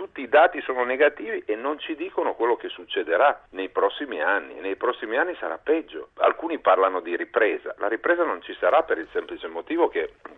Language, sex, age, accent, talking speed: Italian, male, 50-69, native, 200 wpm